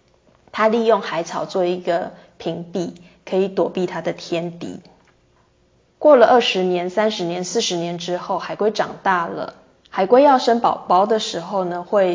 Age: 20-39